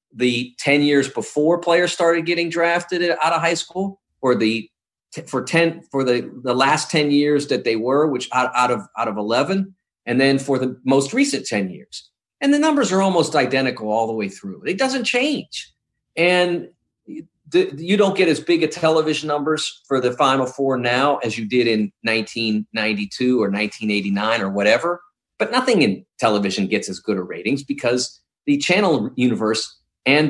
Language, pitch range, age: English, 110-155 Hz, 40-59